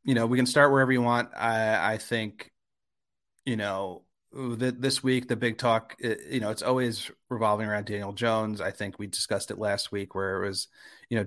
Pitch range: 100-120 Hz